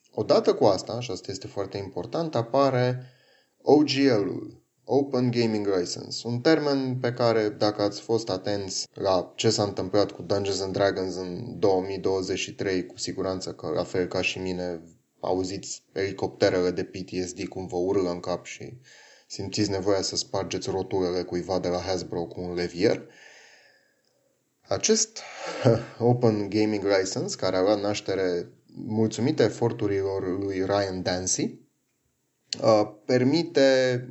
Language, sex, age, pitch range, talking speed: Romanian, male, 20-39, 90-110 Hz, 130 wpm